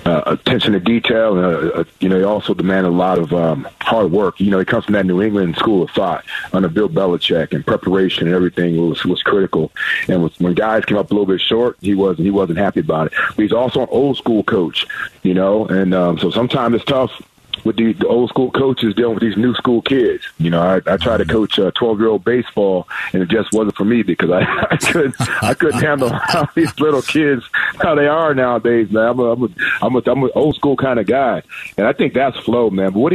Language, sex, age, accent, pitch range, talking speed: English, male, 40-59, American, 95-120 Hz, 245 wpm